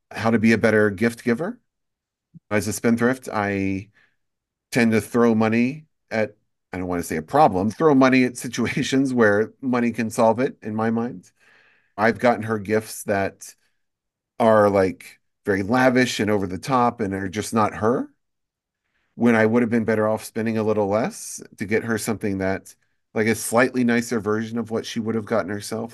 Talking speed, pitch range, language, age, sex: 185 wpm, 100-120 Hz, English, 40-59, male